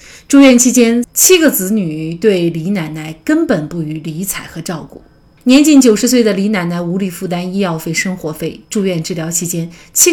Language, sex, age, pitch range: Chinese, female, 30-49, 165-225 Hz